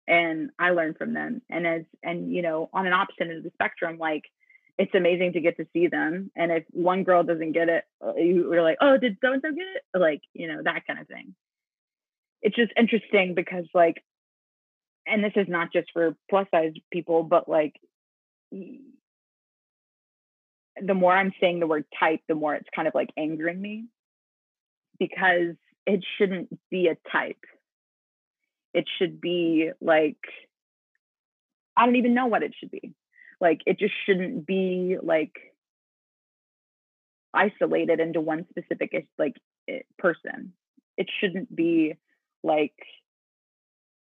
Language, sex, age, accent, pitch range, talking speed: English, female, 20-39, American, 160-200 Hz, 155 wpm